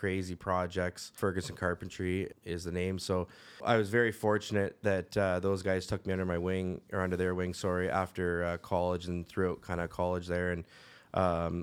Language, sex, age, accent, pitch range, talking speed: English, male, 20-39, American, 90-105 Hz, 190 wpm